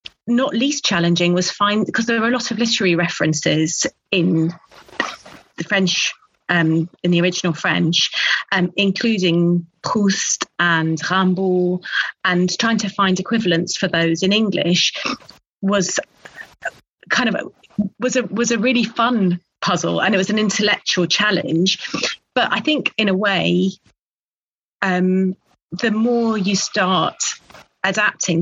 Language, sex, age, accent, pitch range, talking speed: English, female, 30-49, British, 175-210 Hz, 135 wpm